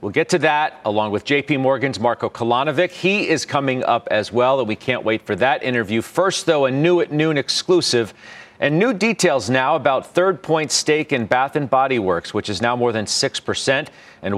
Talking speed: 215 wpm